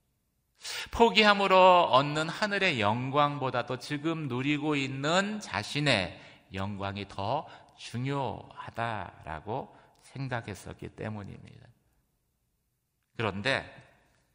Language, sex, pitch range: Korean, male, 100-135 Hz